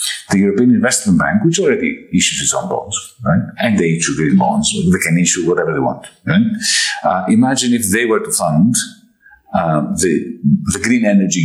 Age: 50-69